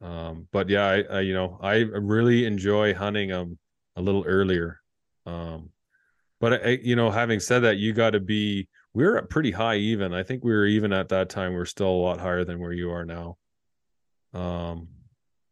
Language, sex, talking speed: English, male, 210 wpm